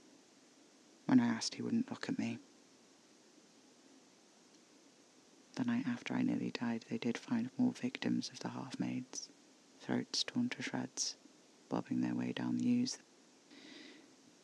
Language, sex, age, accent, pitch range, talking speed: English, female, 40-59, British, 230-280 Hz, 135 wpm